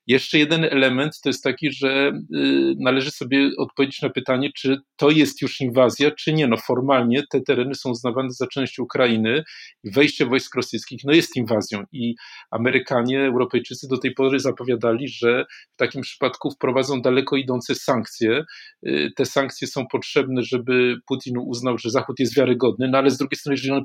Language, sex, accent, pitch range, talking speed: Polish, male, native, 125-140 Hz, 170 wpm